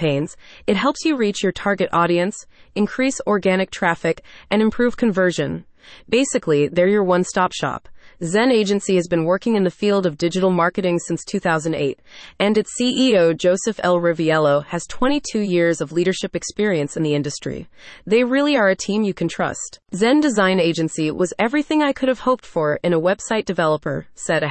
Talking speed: 170 wpm